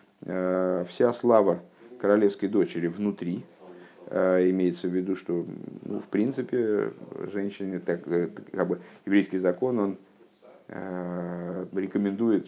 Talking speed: 95 wpm